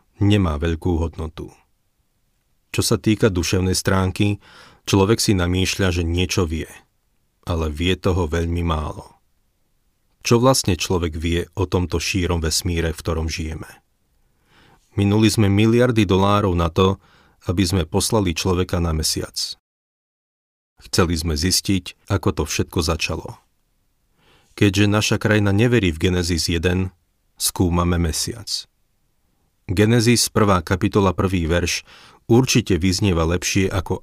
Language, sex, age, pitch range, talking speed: Slovak, male, 40-59, 85-100 Hz, 120 wpm